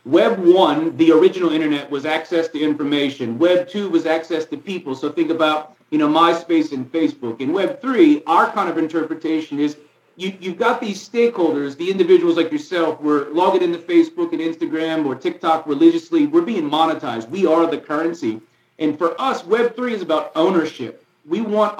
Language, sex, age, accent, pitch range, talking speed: English, male, 40-59, American, 155-240 Hz, 180 wpm